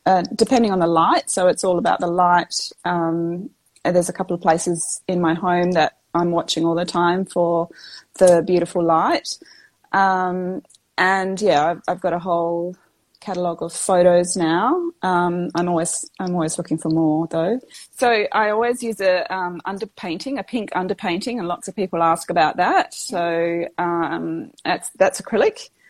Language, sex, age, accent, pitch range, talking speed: English, female, 30-49, Australian, 175-200 Hz, 170 wpm